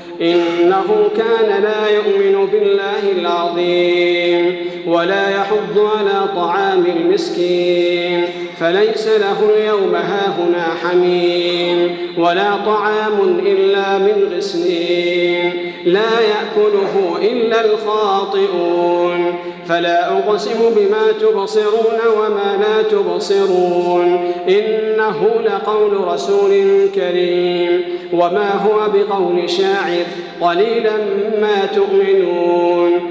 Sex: male